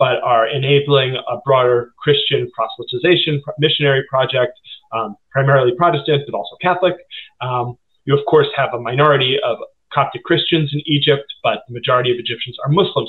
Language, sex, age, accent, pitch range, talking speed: English, male, 30-49, American, 125-165 Hz, 155 wpm